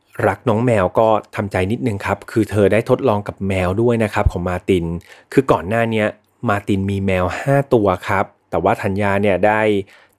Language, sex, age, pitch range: Thai, male, 30-49, 100-130 Hz